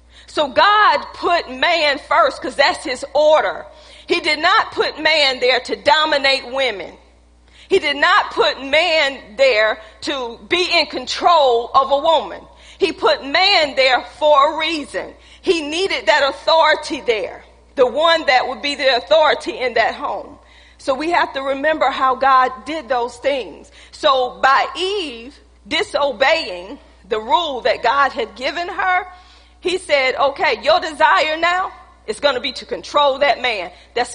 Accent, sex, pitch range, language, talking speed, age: American, female, 250-320 Hz, English, 155 wpm, 40-59